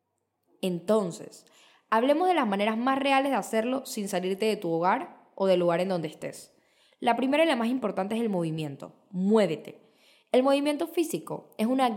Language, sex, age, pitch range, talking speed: English, female, 10-29, 190-275 Hz, 175 wpm